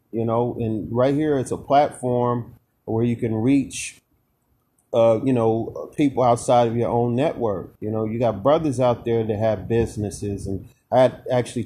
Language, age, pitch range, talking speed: English, 30-49, 110-125 Hz, 175 wpm